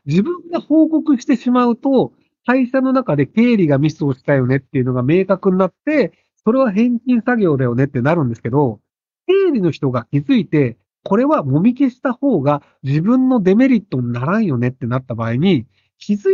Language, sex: Japanese, male